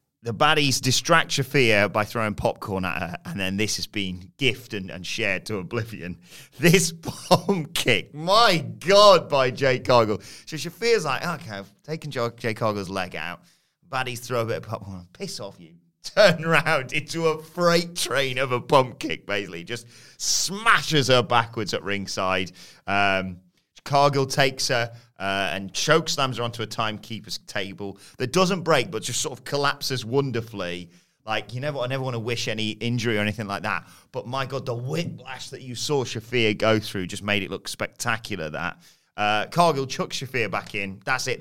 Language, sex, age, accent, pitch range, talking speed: English, male, 30-49, British, 100-140 Hz, 185 wpm